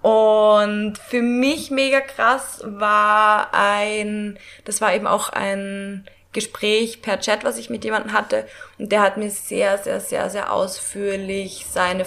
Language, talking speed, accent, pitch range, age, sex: German, 150 wpm, German, 195-225 Hz, 20-39, female